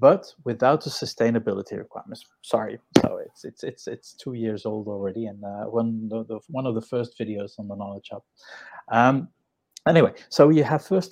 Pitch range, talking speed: 115-155 Hz, 195 wpm